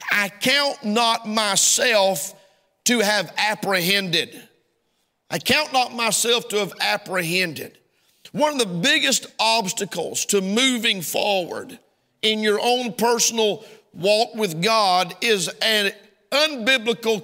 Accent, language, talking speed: American, English, 110 wpm